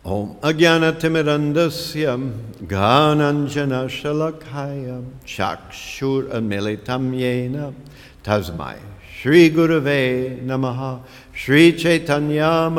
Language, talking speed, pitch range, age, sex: English, 65 wpm, 125-145 Hz, 70-89, male